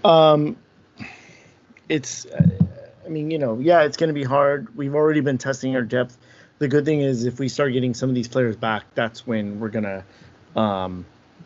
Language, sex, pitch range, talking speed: English, male, 115-145 Hz, 190 wpm